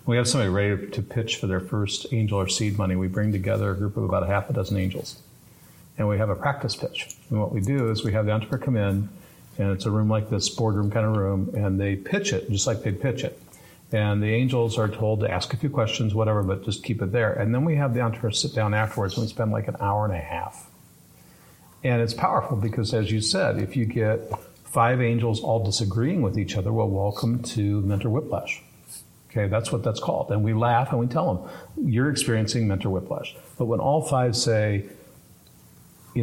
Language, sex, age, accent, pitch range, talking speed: English, male, 50-69, American, 105-115 Hz, 230 wpm